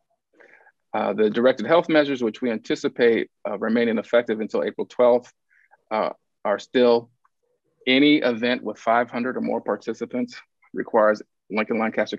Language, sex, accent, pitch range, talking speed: English, male, American, 110-130 Hz, 130 wpm